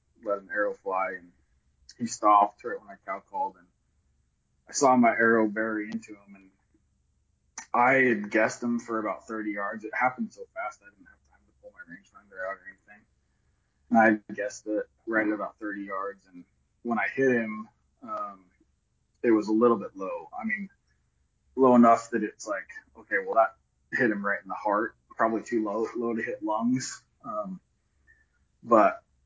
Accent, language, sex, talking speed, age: American, English, male, 185 wpm, 20-39